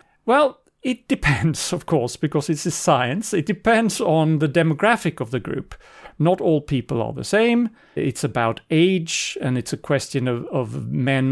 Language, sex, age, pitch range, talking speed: English, male, 40-59, 130-185 Hz, 175 wpm